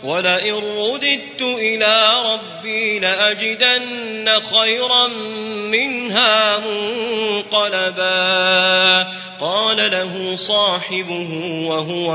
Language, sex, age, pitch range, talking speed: Arabic, male, 30-49, 210-250 Hz, 60 wpm